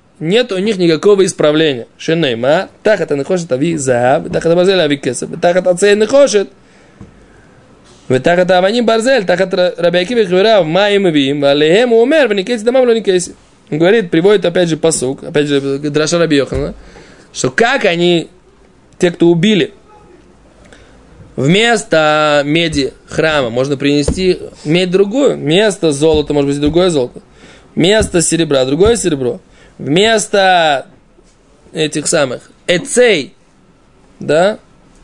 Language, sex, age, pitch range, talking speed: Russian, male, 20-39, 150-200 Hz, 90 wpm